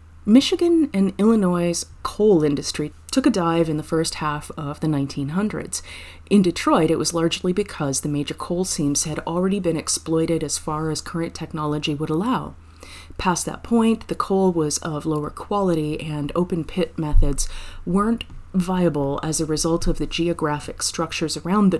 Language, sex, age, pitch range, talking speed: English, female, 30-49, 150-180 Hz, 165 wpm